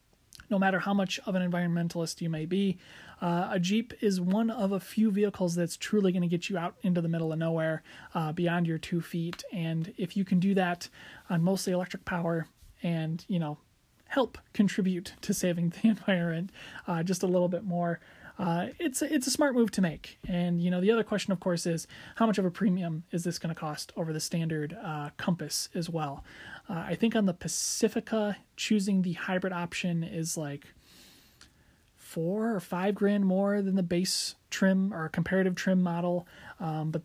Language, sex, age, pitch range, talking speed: English, male, 30-49, 165-195 Hz, 200 wpm